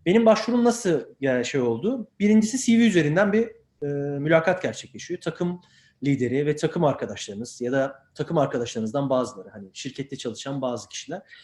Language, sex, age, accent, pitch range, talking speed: Turkish, male, 30-49, native, 140-215 Hz, 145 wpm